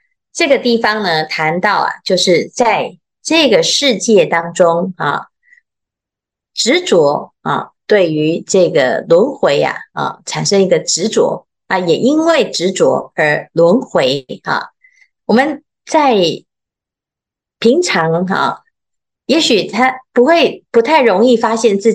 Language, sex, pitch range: Chinese, female, 185-315 Hz